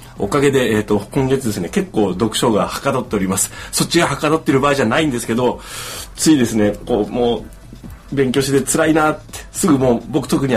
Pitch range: 105-140 Hz